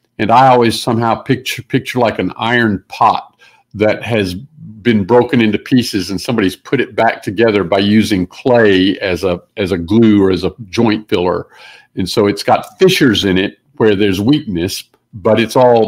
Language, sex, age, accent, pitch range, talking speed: English, male, 50-69, American, 105-135 Hz, 180 wpm